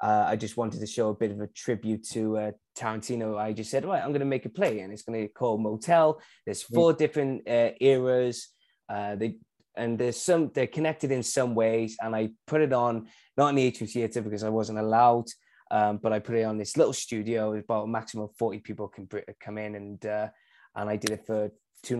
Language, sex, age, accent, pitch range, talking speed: English, male, 20-39, British, 110-135 Hz, 245 wpm